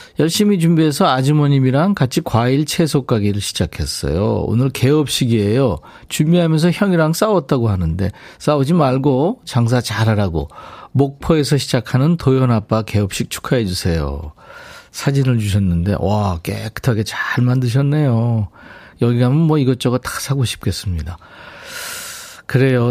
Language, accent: Korean, native